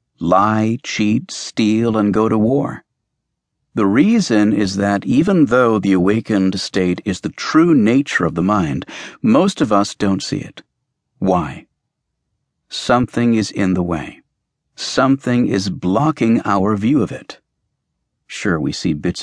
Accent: American